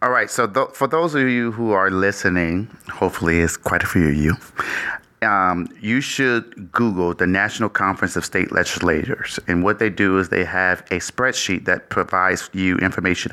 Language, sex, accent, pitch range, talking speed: English, male, American, 90-105 Hz, 185 wpm